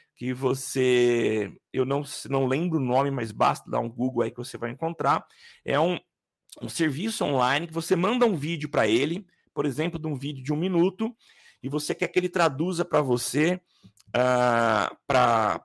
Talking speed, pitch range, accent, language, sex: 180 wpm, 140-185 Hz, Brazilian, Portuguese, male